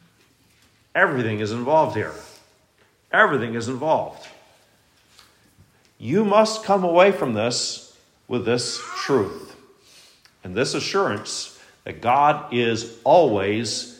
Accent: American